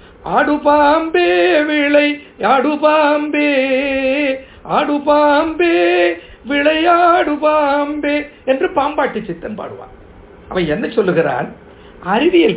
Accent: native